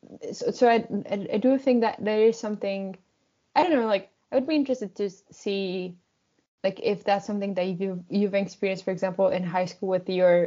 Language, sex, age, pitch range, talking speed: English, female, 10-29, 180-205 Hz, 200 wpm